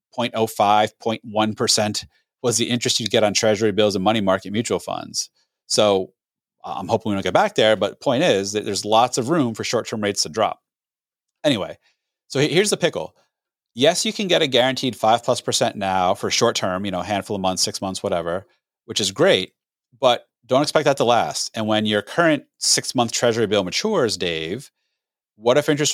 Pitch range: 100-120 Hz